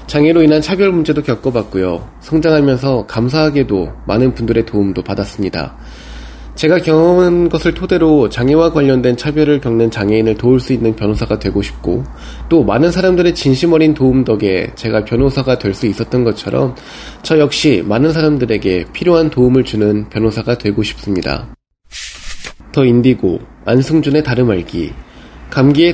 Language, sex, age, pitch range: Korean, male, 20-39, 110-150 Hz